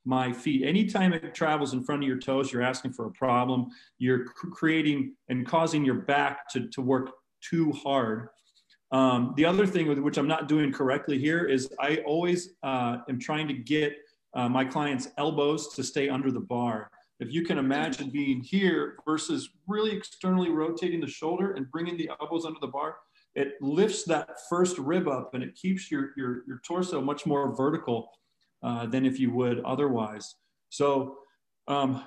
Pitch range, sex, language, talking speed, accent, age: 130-165 Hz, male, English, 180 wpm, American, 40-59